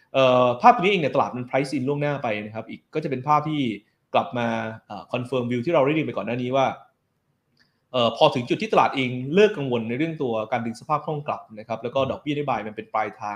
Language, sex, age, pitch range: Thai, male, 20-39, 115-145 Hz